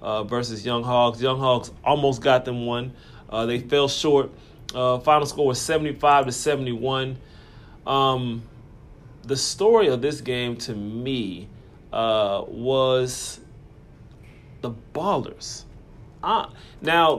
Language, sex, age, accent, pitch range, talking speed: English, male, 30-49, American, 115-140 Hz, 120 wpm